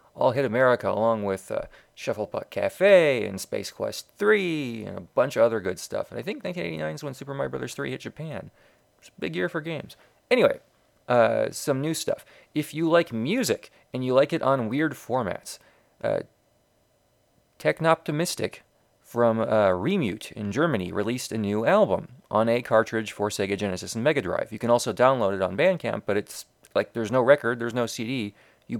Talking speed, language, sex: 190 wpm, English, male